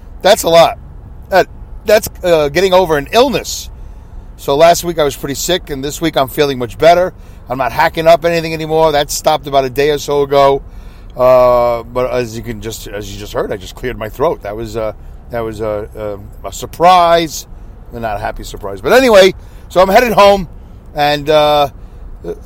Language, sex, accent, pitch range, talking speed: English, male, American, 115-160 Hz, 200 wpm